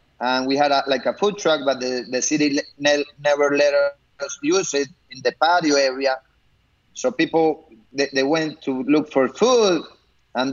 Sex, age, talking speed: male, 30-49, 170 wpm